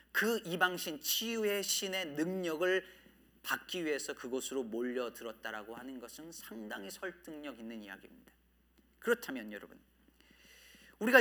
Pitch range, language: 160-235 Hz, Korean